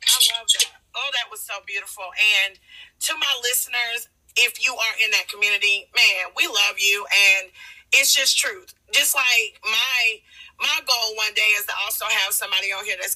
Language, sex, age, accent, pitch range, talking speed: English, female, 30-49, American, 220-280 Hz, 185 wpm